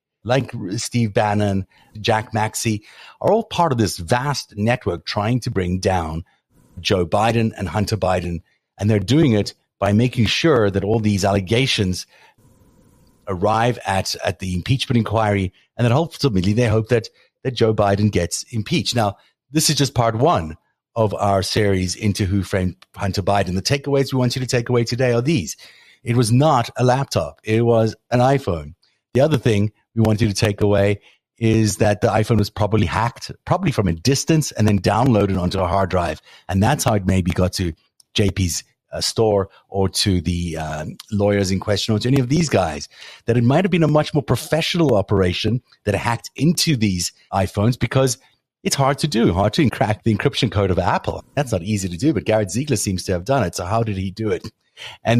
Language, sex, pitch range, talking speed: English, male, 100-125 Hz, 195 wpm